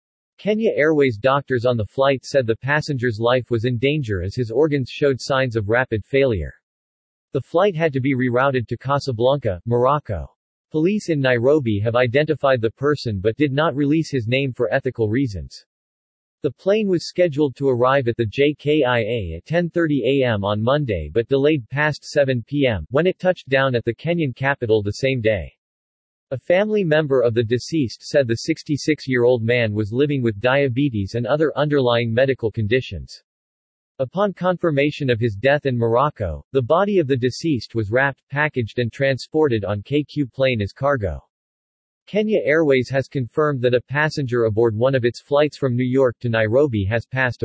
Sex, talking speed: male, 170 wpm